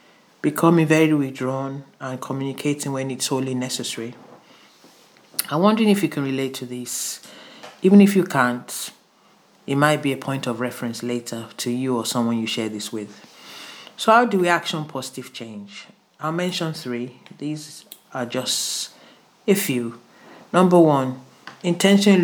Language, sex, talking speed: English, male, 150 wpm